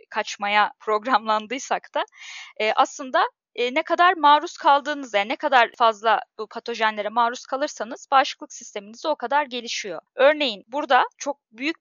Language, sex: Turkish, female